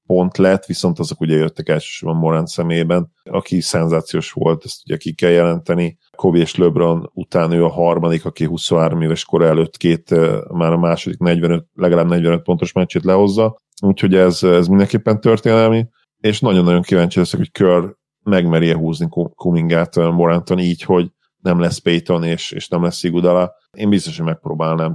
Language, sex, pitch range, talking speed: Hungarian, male, 85-90 Hz, 165 wpm